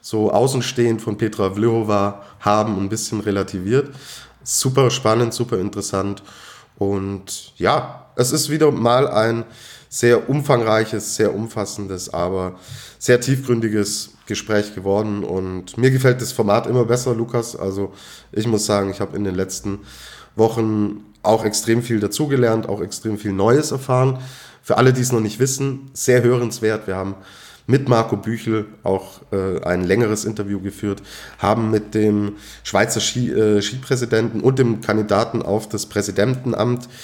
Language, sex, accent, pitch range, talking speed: German, male, German, 100-120 Hz, 145 wpm